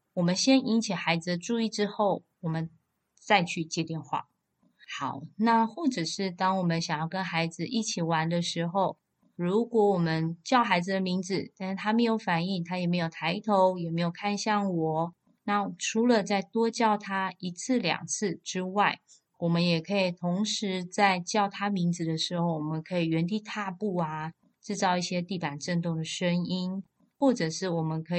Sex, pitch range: female, 165-205 Hz